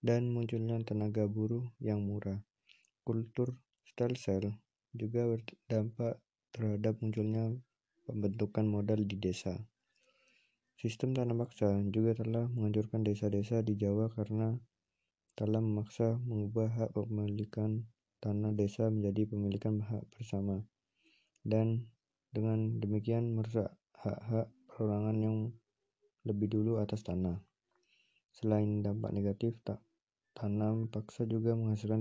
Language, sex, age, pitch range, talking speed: Indonesian, male, 20-39, 105-115 Hz, 105 wpm